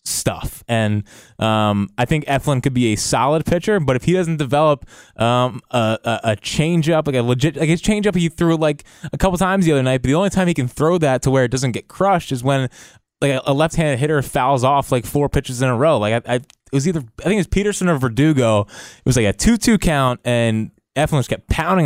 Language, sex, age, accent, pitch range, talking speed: English, male, 20-39, American, 120-155 Hz, 240 wpm